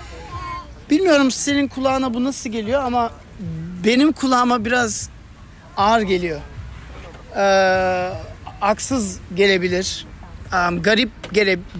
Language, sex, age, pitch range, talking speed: Turkish, male, 40-59, 185-235 Hz, 90 wpm